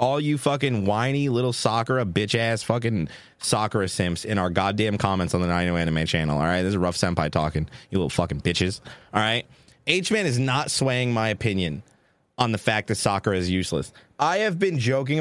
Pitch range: 110-160 Hz